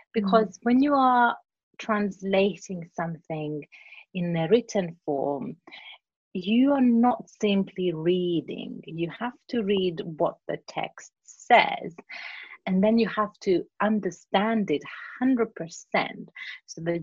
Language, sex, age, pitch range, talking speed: English, female, 30-49, 170-220 Hz, 115 wpm